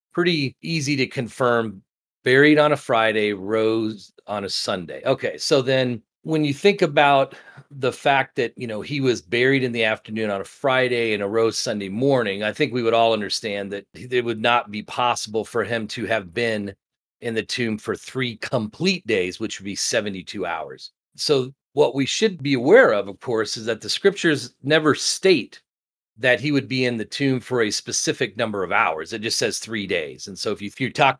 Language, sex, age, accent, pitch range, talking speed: English, male, 40-59, American, 110-135 Hz, 200 wpm